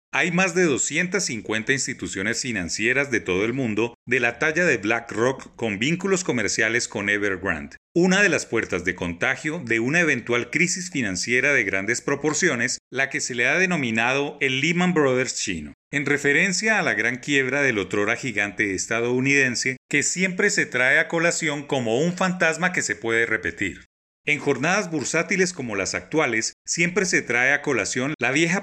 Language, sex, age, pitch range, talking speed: Spanish, male, 30-49, 120-165 Hz, 170 wpm